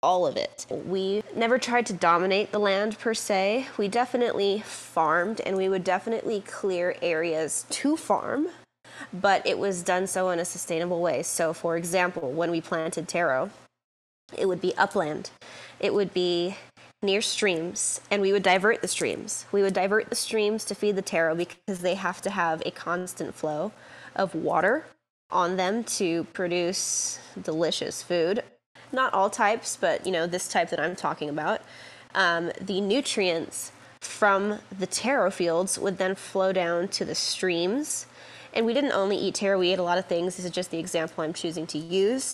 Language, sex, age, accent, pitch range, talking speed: English, female, 20-39, American, 170-200 Hz, 180 wpm